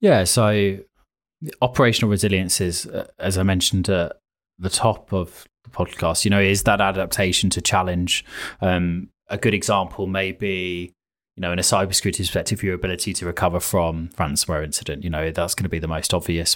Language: English